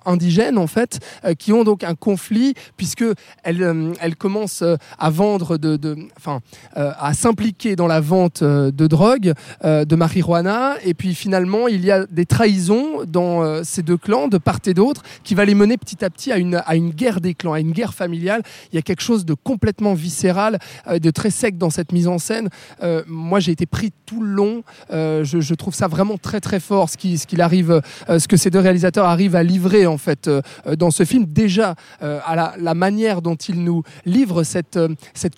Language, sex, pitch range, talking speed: French, male, 160-200 Hz, 220 wpm